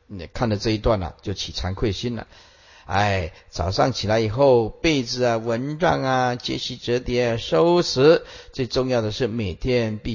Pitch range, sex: 105-140 Hz, male